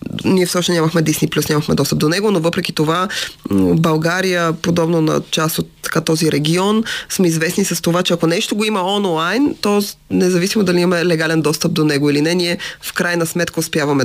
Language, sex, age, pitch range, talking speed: Bulgarian, female, 20-39, 160-200 Hz, 190 wpm